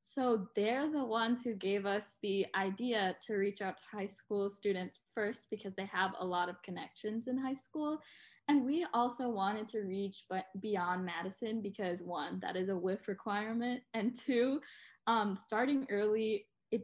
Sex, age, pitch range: female, 10-29, 190-230 Hz